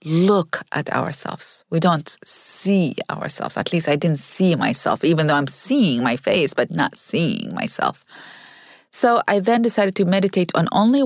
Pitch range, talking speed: 180-250 Hz, 170 wpm